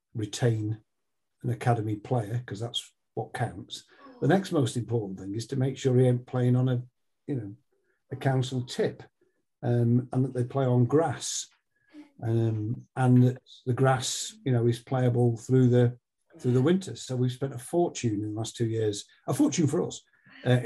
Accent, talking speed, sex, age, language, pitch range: British, 185 wpm, male, 50-69, English, 120-140 Hz